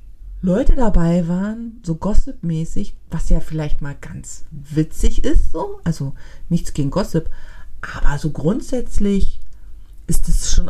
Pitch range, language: 145-190 Hz, German